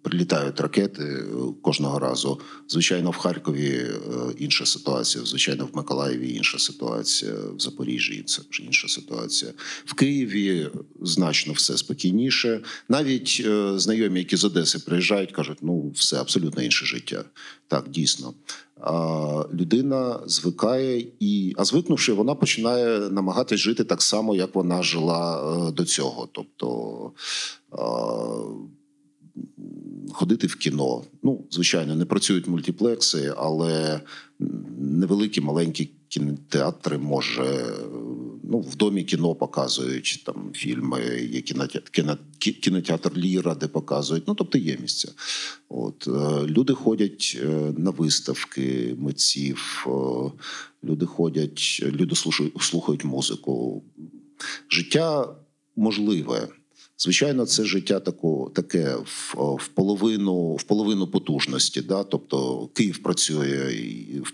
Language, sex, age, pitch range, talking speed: Italian, male, 40-59, 75-105 Hz, 105 wpm